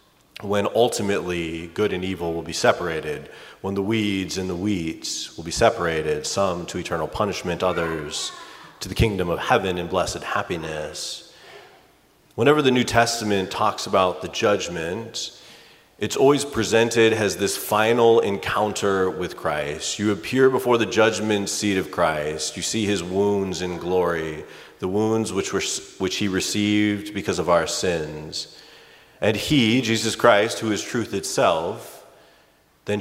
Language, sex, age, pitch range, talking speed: English, male, 30-49, 90-110 Hz, 145 wpm